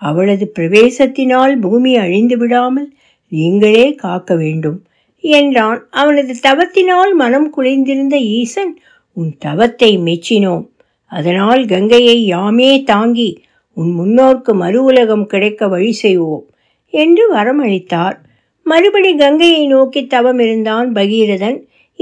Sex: female